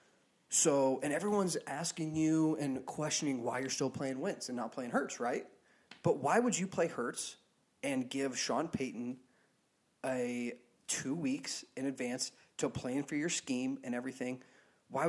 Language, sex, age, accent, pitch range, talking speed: English, male, 30-49, American, 125-160 Hz, 160 wpm